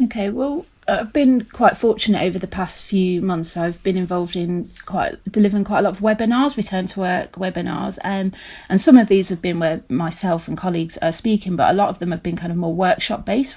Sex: female